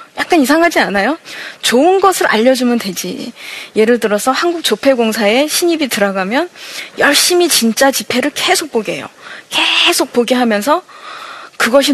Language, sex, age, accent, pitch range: Korean, female, 20-39, native, 215-300 Hz